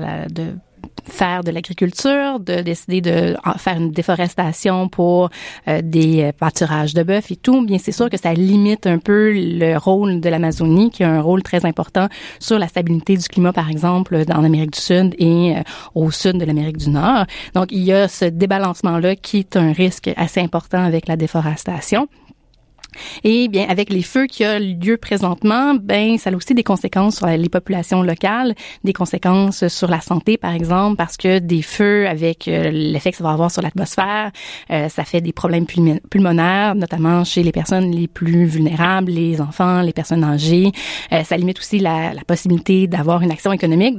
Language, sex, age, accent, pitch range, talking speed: French, female, 30-49, Canadian, 165-195 Hz, 185 wpm